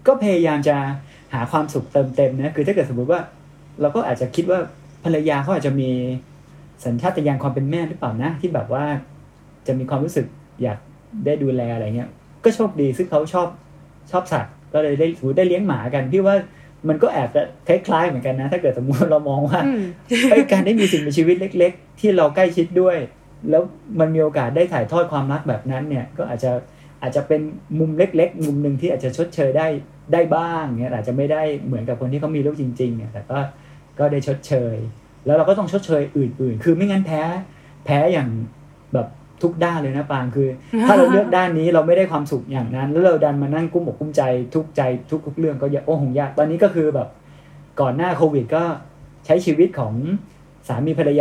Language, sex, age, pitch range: Thai, male, 20-39, 135-170 Hz